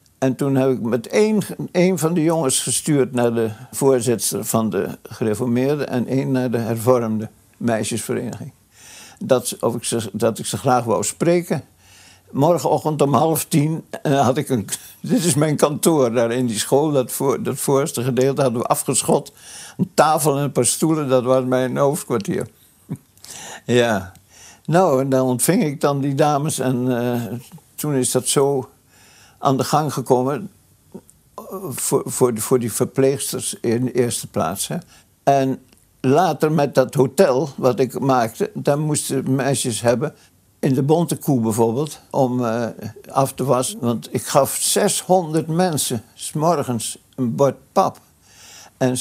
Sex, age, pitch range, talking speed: male, 60-79, 120-145 Hz, 150 wpm